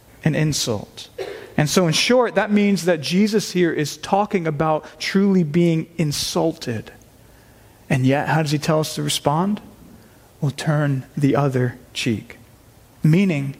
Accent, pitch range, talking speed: American, 140-195 Hz, 140 wpm